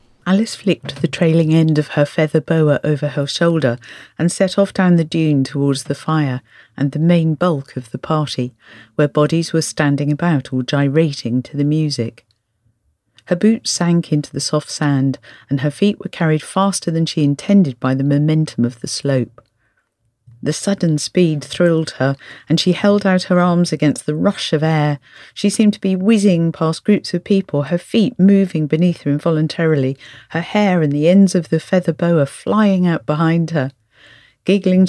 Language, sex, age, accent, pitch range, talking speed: English, female, 40-59, British, 135-175 Hz, 180 wpm